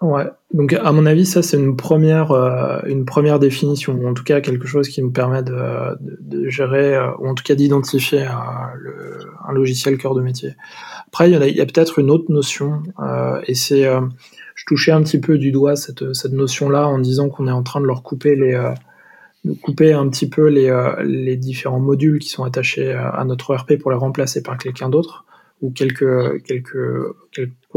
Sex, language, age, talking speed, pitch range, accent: male, French, 20-39, 215 wpm, 130-150 Hz, French